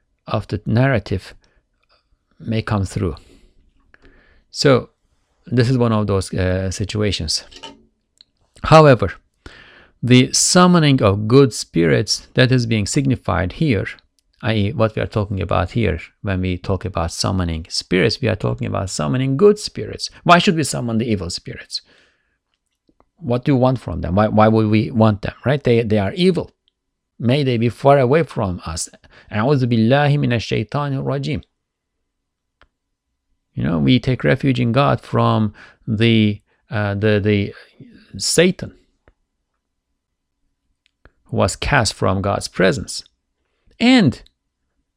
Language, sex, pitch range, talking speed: English, male, 90-130 Hz, 130 wpm